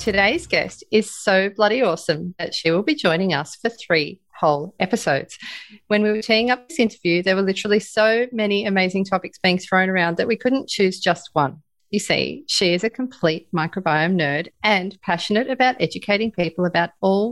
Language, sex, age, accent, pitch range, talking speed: English, female, 30-49, Australian, 175-225 Hz, 185 wpm